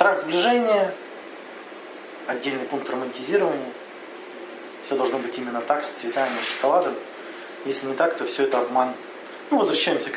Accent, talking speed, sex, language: native, 140 wpm, male, Russian